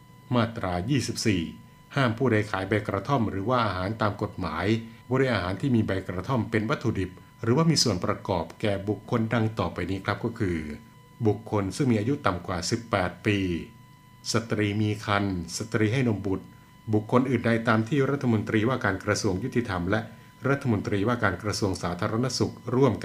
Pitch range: 100-125 Hz